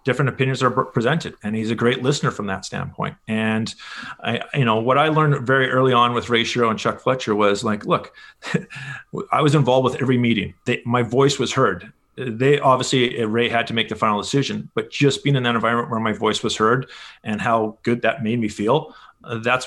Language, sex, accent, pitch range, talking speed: English, male, American, 110-130 Hz, 210 wpm